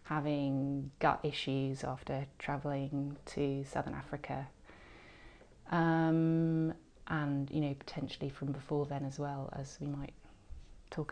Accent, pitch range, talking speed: British, 140-175 Hz, 120 wpm